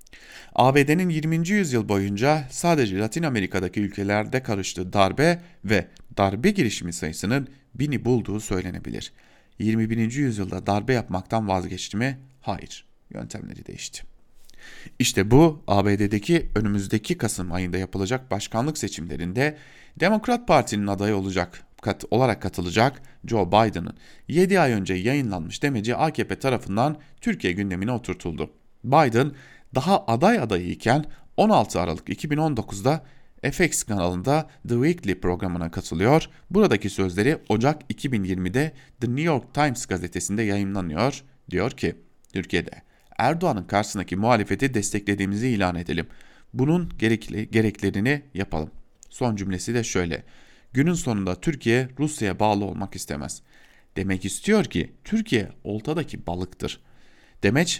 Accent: Turkish